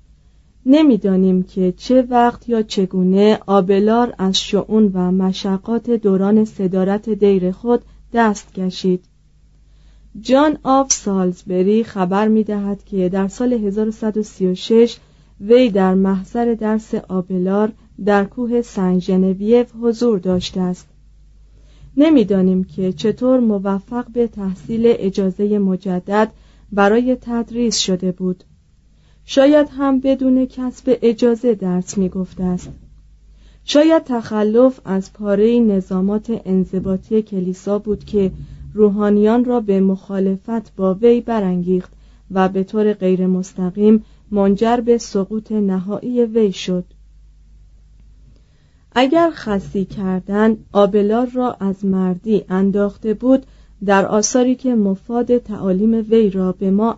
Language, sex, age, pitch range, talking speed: Persian, female, 40-59, 185-230 Hz, 105 wpm